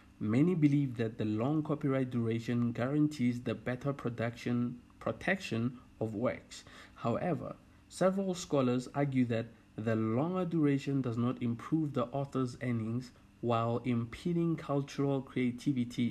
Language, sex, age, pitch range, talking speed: English, male, 50-69, 110-135 Hz, 120 wpm